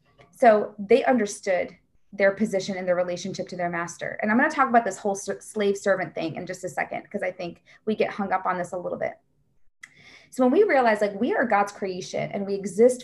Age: 20-39